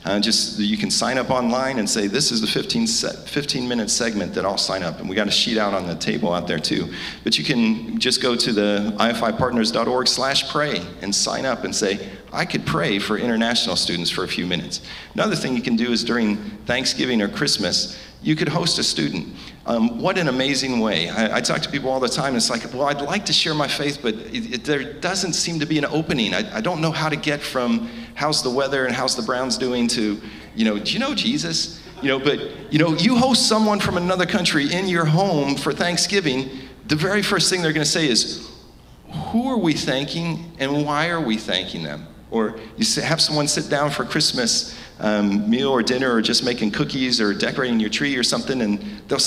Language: English